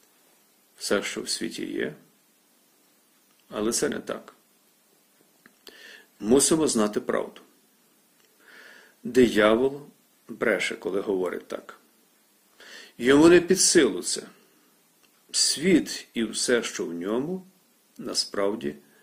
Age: 50-69